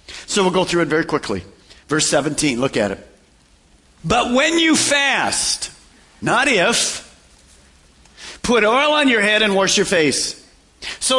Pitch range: 165-225 Hz